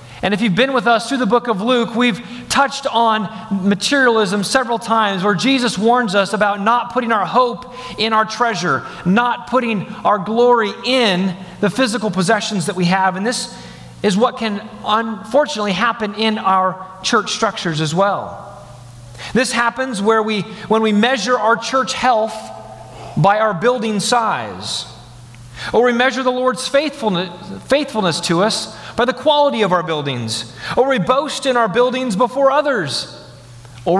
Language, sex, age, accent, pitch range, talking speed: English, male, 40-59, American, 175-235 Hz, 160 wpm